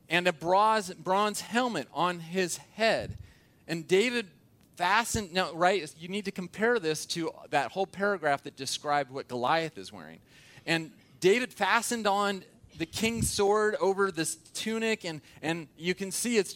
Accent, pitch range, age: American, 130-185 Hz, 30-49